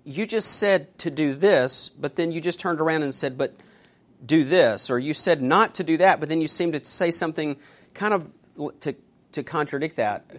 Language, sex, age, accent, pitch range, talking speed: English, male, 40-59, American, 135-180 Hz, 220 wpm